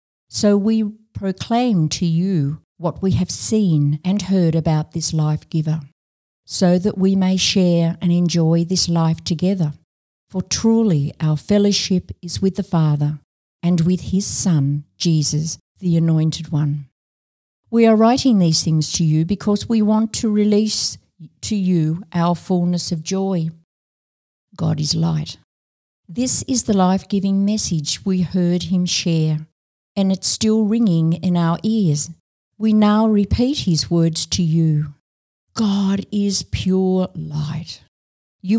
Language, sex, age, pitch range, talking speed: English, female, 50-69, 160-200 Hz, 140 wpm